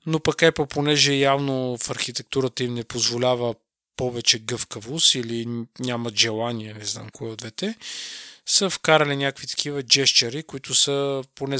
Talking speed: 140 wpm